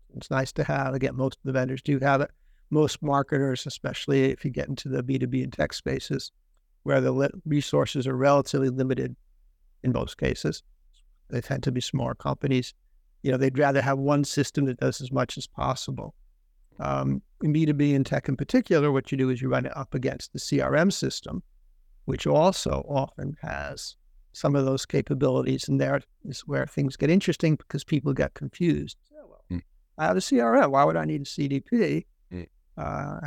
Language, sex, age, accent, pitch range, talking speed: English, male, 60-79, American, 130-145 Hz, 180 wpm